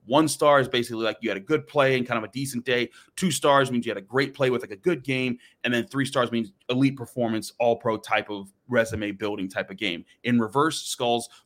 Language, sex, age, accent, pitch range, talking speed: English, male, 30-49, American, 110-135 Hz, 250 wpm